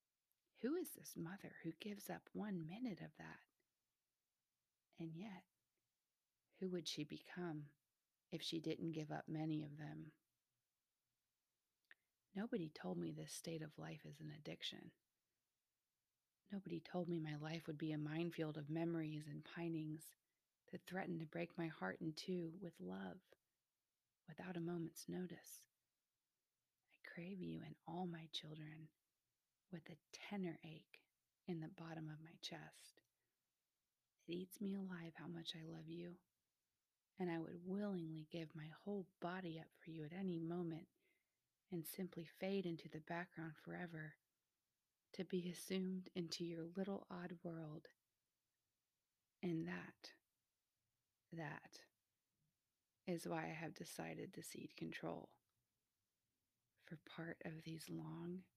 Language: English